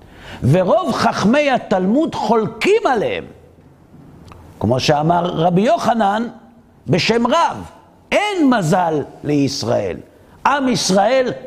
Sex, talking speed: male, 85 wpm